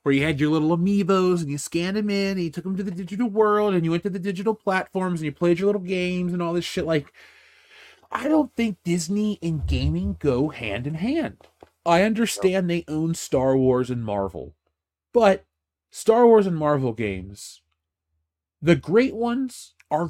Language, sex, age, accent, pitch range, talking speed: English, male, 30-49, American, 120-175 Hz, 195 wpm